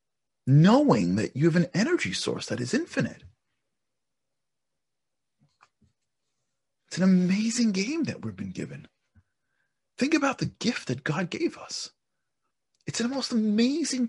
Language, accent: English, American